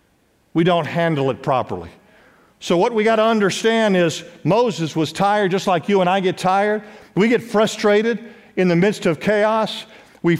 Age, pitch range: 50-69, 170-215 Hz